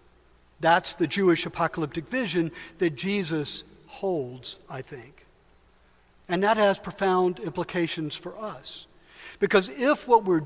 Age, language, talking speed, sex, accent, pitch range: 60-79, English, 120 wpm, male, American, 145-200 Hz